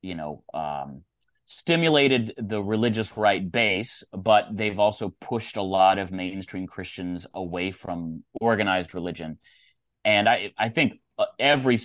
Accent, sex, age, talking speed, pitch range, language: American, male, 30-49, 130 wpm, 90-125 Hz, English